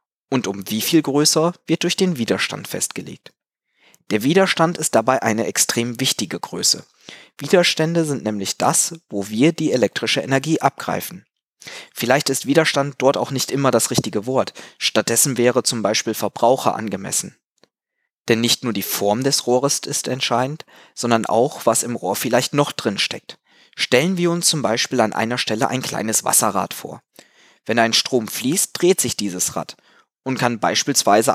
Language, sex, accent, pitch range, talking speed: German, male, German, 115-155 Hz, 165 wpm